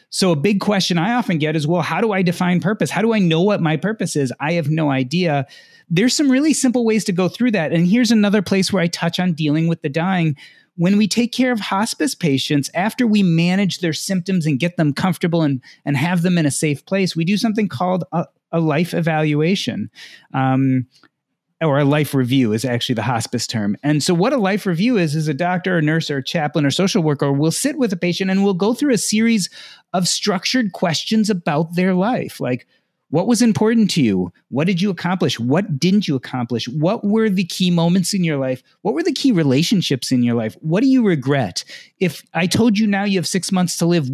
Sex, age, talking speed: male, 30-49, 230 wpm